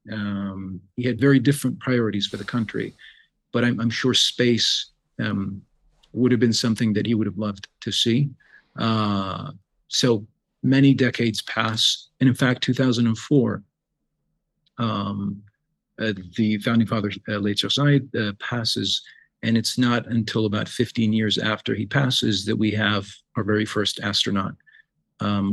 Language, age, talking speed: English, 40-59, 145 wpm